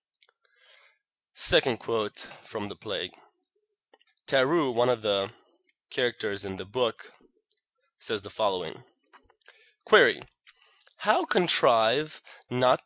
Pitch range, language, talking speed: 115-190 Hz, English, 95 wpm